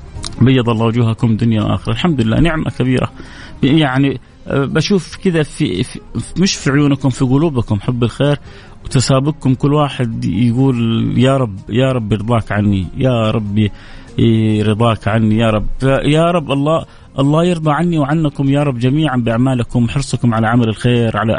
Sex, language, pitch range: male, Arabic, 120-165 Hz